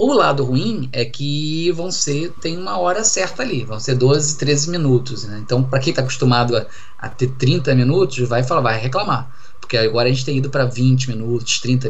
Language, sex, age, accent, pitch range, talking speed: Portuguese, male, 20-39, Brazilian, 120-145 Hz, 210 wpm